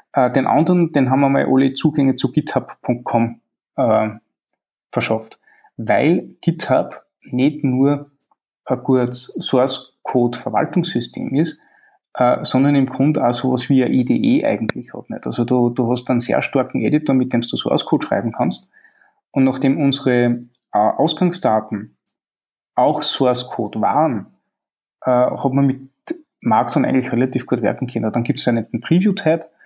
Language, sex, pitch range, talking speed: German, male, 120-145 Hz, 145 wpm